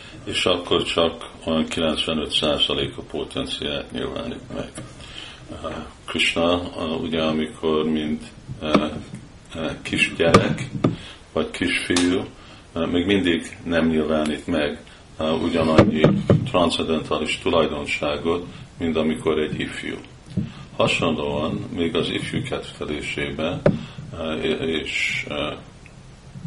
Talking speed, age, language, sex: 80 wpm, 50-69, Hungarian, male